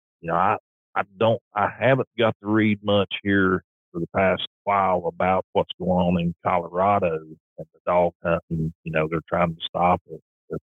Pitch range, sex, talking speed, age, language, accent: 80-100 Hz, male, 190 wpm, 40-59, English, American